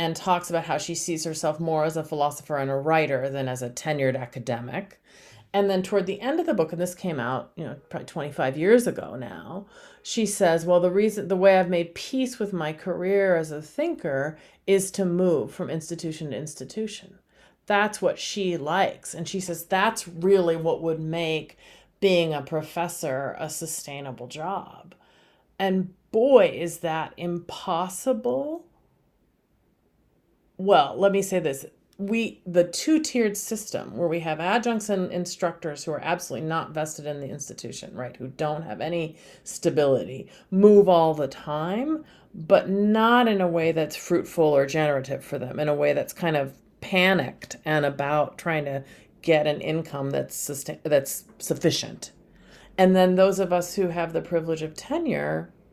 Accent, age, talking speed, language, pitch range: American, 40-59, 170 wpm, English, 155-195 Hz